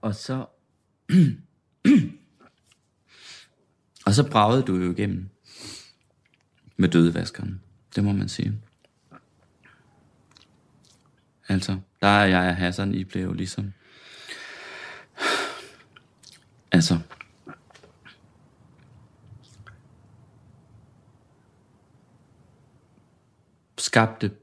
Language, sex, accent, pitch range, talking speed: Danish, male, native, 90-110 Hz, 65 wpm